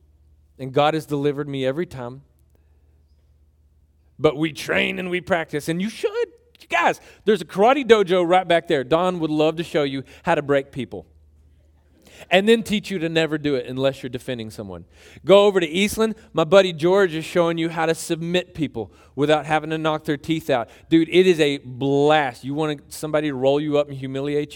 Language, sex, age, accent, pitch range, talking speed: English, male, 40-59, American, 125-180 Hz, 200 wpm